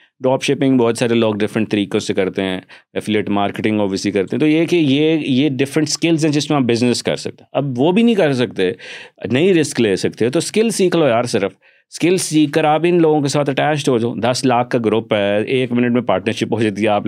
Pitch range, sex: 105-145 Hz, male